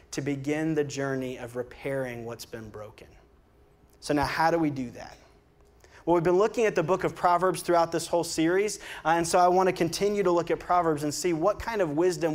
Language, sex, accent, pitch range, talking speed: English, male, American, 145-180 Hz, 220 wpm